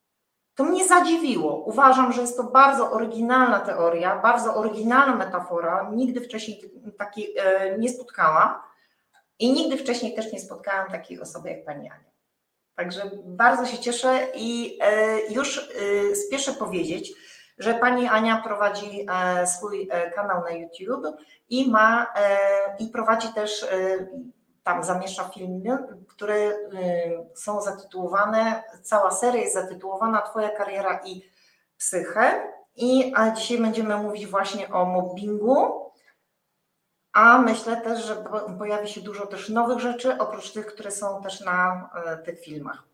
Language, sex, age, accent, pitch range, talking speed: Polish, female, 40-59, native, 185-240 Hz, 125 wpm